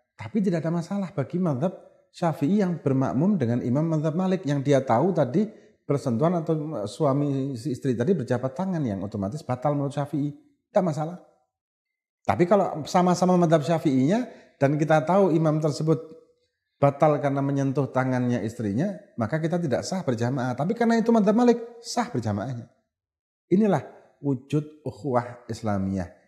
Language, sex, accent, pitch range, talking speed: Indonesian, male, native, 105-160 Hz, 145 wpm